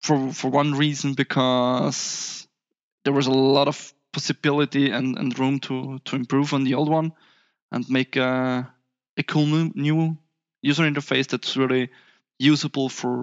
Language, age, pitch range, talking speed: English, 20-39, 125-145 Hz, 150 wpm